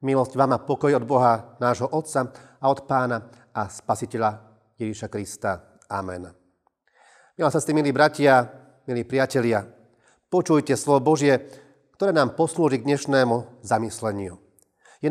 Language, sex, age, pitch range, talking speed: Slovak, male, 40-59, 120-145 Hz, 130 wpm